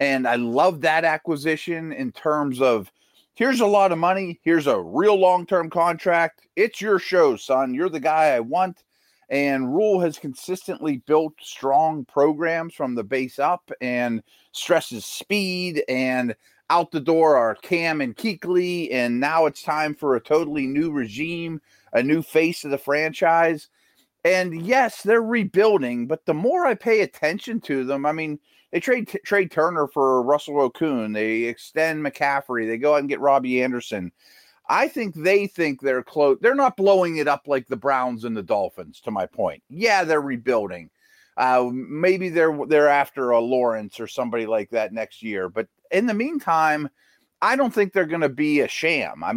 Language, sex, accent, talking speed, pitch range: English, male, American, 175 wpm, 130-185 Hz